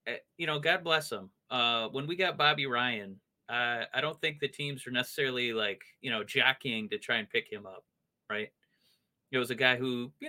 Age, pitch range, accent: 30-49, 125-190 Hz, American